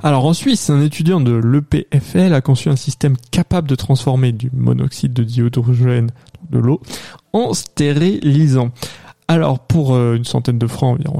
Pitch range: 130-160 Hz